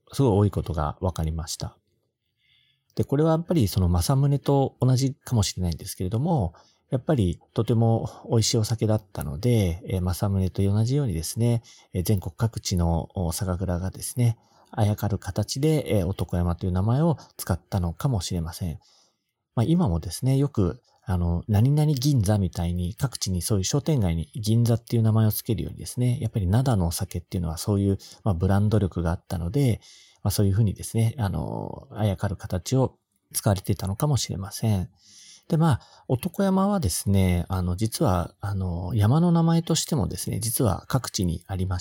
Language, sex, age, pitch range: Japanese, male, 40-59, 95-125 Hz